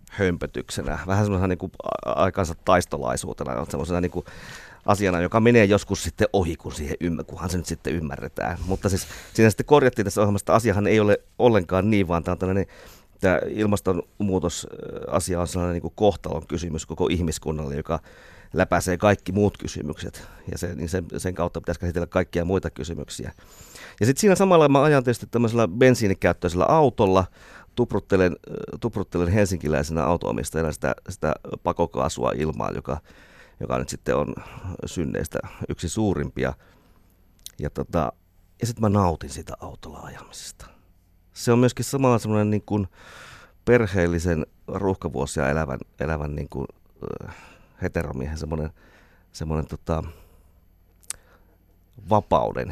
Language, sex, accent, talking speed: Finnish, male, native, 130 wpm